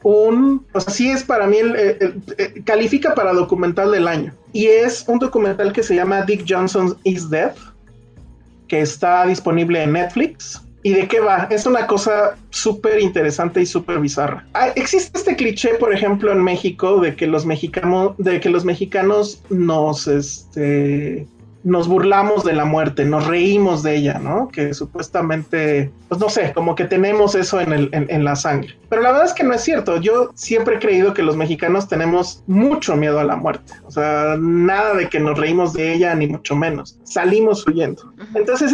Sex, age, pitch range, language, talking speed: male, 30-49, 165-220 Hz, Spanish, 190 wpm